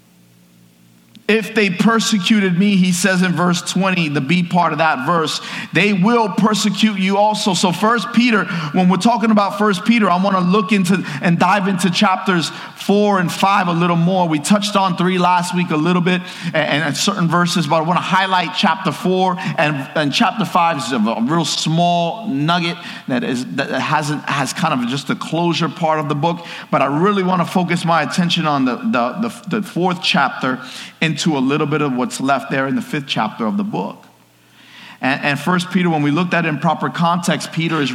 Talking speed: 210 wpm